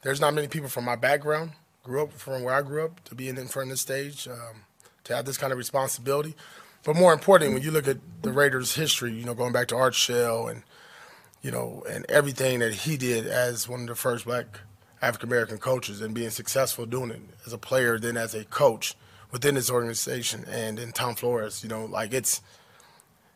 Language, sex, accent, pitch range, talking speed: English, male, American, 115-135 Hz, 215 wpm